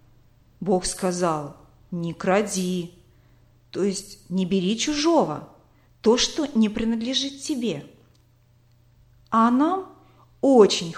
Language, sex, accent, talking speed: Russian, female, native, 95 wpm